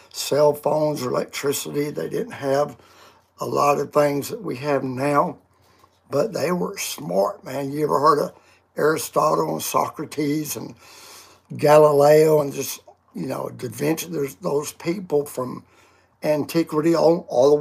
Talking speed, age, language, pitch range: 145 wpm, 60-79, English, 140-165 Hz